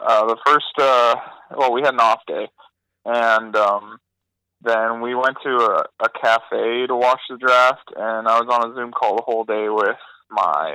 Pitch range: 110-125 Hz